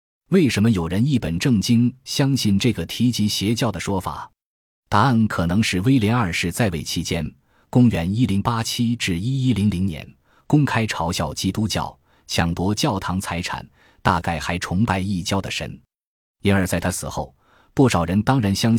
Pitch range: 85-120 Hz